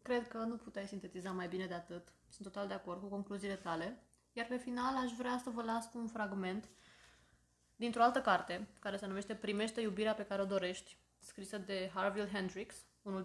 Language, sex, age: Romanian, female, 20-39